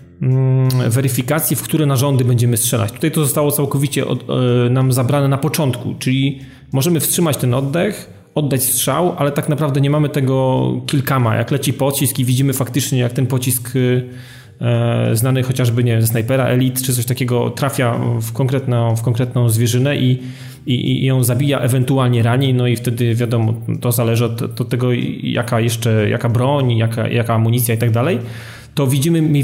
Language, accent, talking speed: Polish, native, 165 wpm